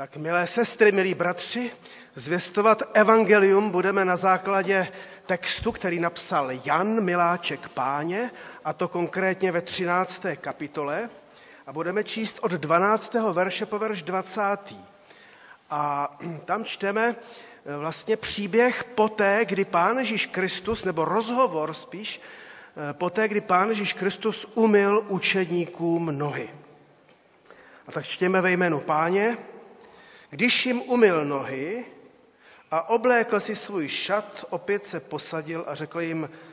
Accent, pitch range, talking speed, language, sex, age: native, 160-205 Hz, 120 wpm, Czech, male, 40-59